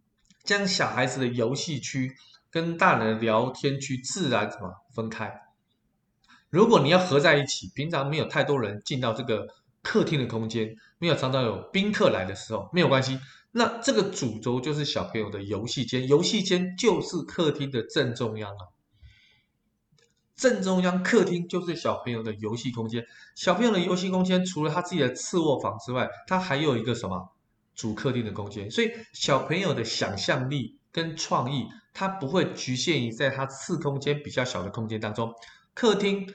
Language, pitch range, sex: Chinese, 115-175 Hz, male